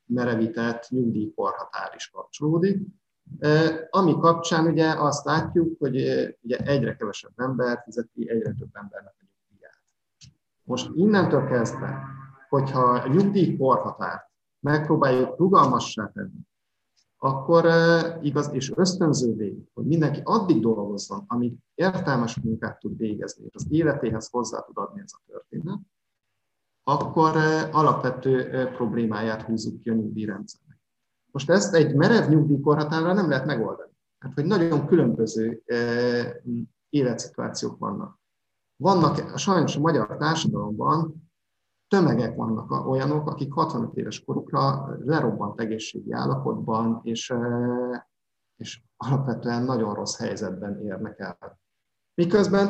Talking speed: 110 wpm